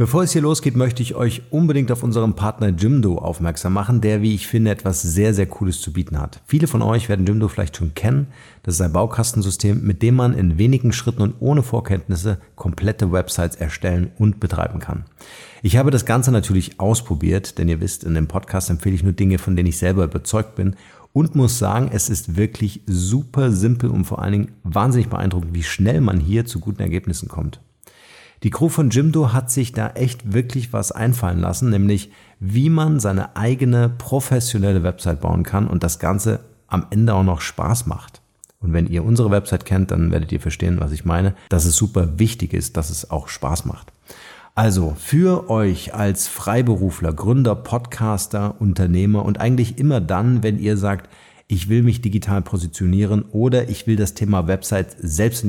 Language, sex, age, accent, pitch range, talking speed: German, male, 50-69, German, 90-115 Hz, 190 wpm